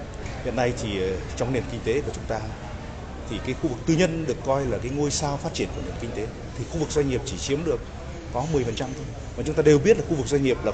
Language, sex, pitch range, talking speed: Vietnamese, male, 110-150 Hz, 280 wpm